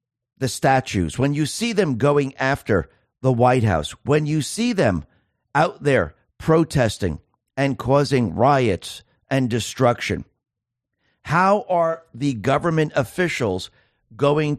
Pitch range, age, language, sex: 110-145 Hz, 50-69, English, male